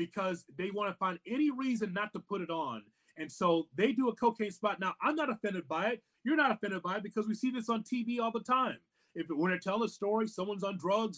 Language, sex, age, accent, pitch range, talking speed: English, male, 30-49, American, 165-220 Hz, 260 wpm